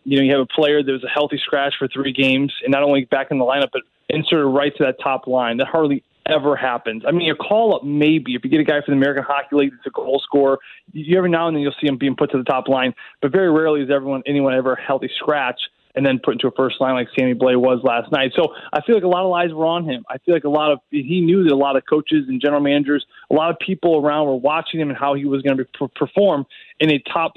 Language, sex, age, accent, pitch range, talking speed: English, male, 20-39, American, 135-165 Hz, 295 wpm